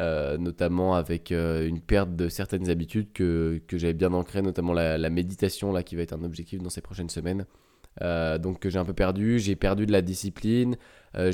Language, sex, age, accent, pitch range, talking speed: French, male, 20-39, French, 90-100 Hz, 215 wpm